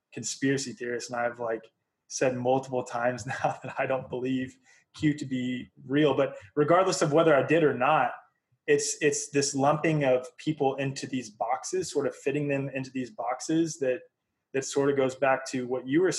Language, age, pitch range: English, 20-39, 125-150 Hz